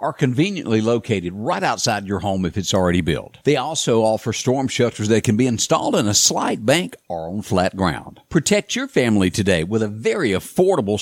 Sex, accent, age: male, American, 60-79